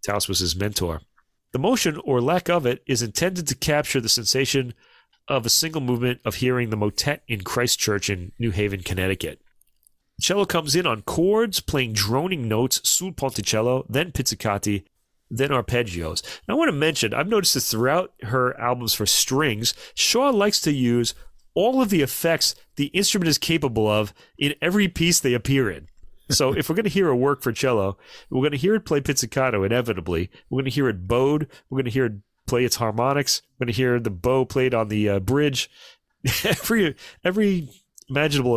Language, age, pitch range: English, 40-59, 110-145 Hz